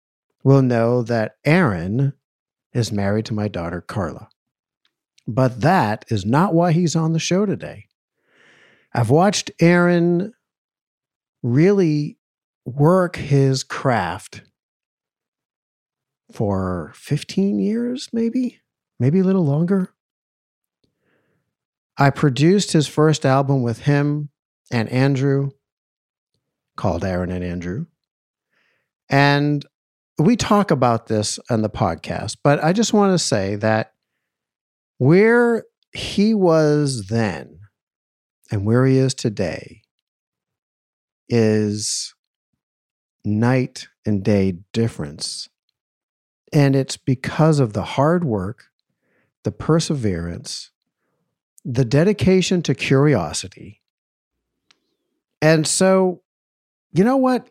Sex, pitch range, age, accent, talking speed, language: male, 110-170 Hz, 50-69, American, 100 wpm, English